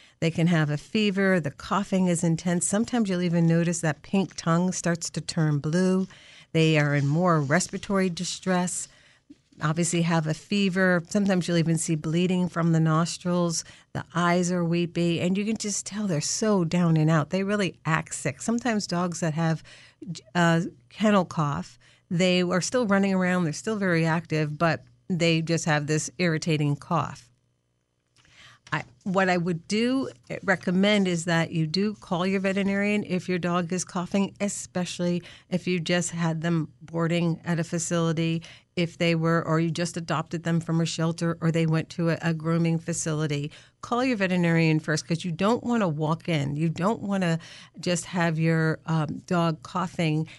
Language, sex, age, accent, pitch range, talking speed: English, female, 50-69, American, 160-185 Hz, 175 wpm